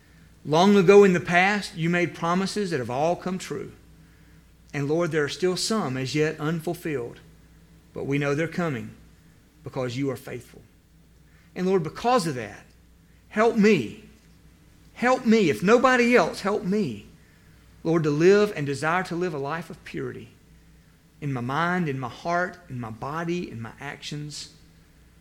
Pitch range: 120-175 Hz